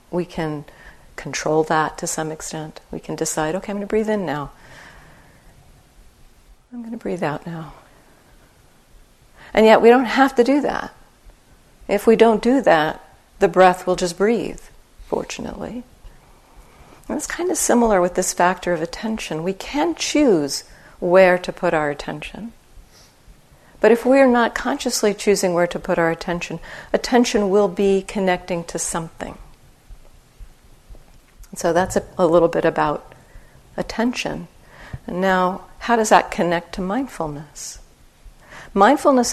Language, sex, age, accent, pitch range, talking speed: English, female, 50-69, American, 170-220 Hz, 140 wpm